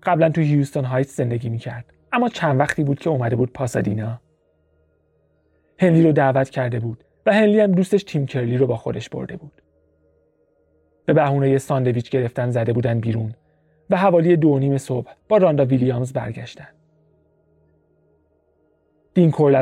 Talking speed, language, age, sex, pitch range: 145 wpm, Persian, 30-49, male, 115-160 Hz